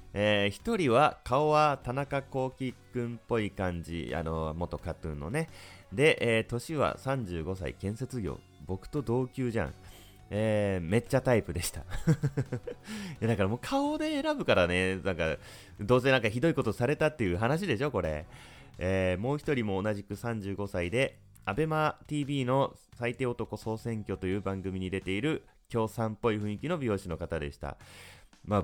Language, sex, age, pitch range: Japanese, male, 30-49, 90-130 Hz